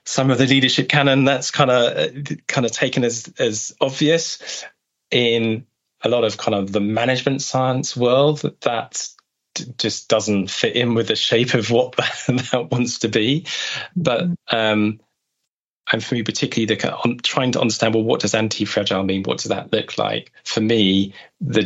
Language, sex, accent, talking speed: English, male, British, 180 wpm